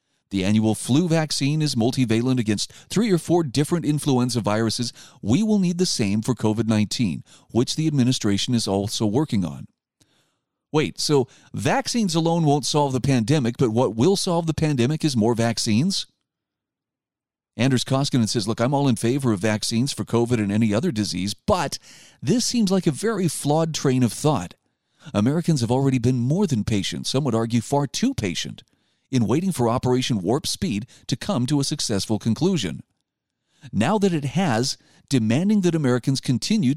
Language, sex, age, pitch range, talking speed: English, male, 40-59, 115-155 Hz, 170 wpm